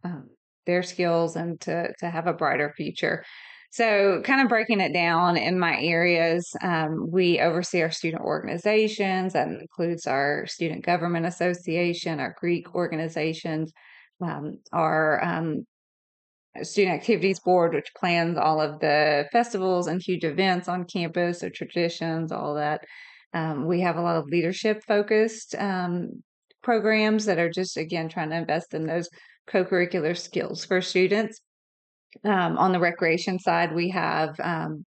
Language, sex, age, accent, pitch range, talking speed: English, female, 30-49, American, 165-190 Hz, 150 wpm